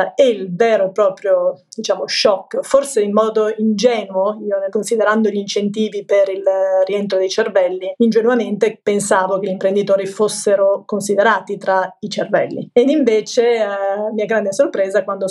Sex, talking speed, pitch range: female, 145 wpm, 200-225 Hz